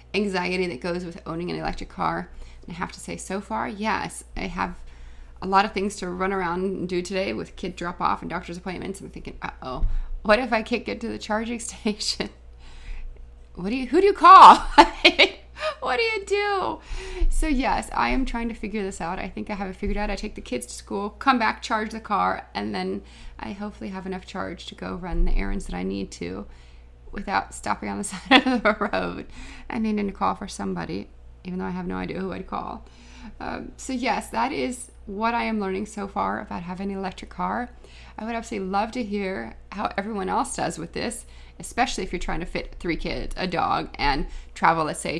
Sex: female